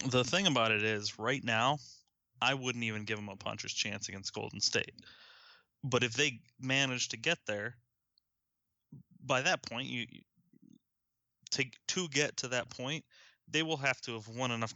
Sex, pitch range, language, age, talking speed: male, 110-125 Hz, English, 20-39, 175 wpm